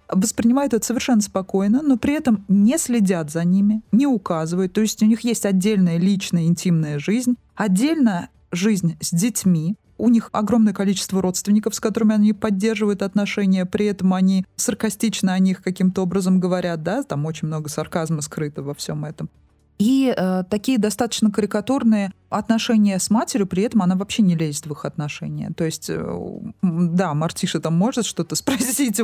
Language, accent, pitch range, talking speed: Russian, native, 175-225 Hz, 165 wpm